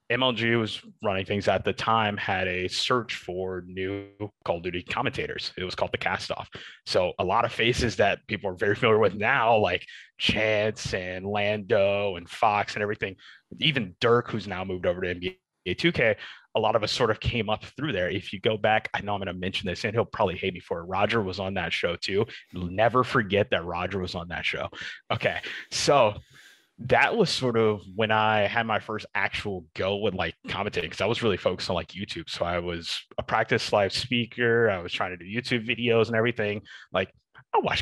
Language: English